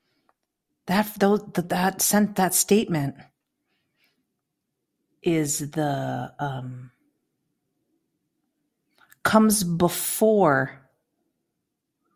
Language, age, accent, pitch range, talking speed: English, 50-69, American, 150-190 Hz, 55 wpm